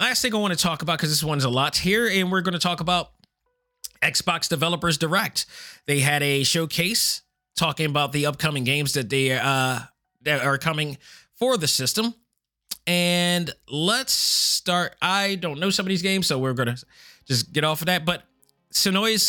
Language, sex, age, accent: English, male, 30-49, American